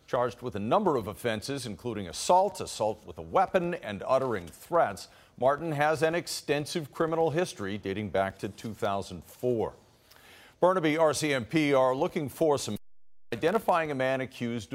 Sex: male